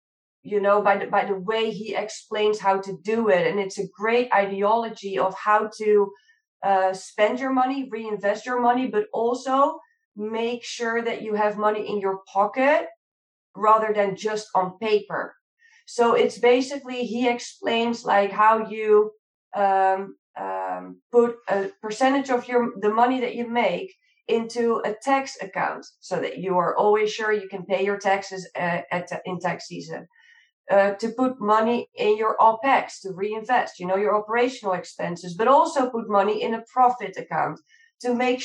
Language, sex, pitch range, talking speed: English, female, 200-245 Hz, 170 wpm